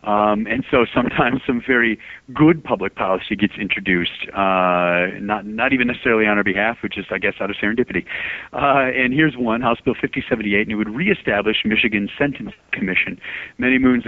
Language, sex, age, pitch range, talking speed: English, male, 40-59, 95-120 Hz, 180 wpm